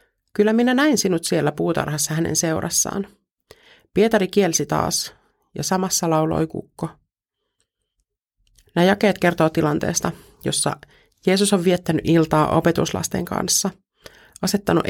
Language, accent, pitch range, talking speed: Finnish, native, 155-205 Hz, 110 wpm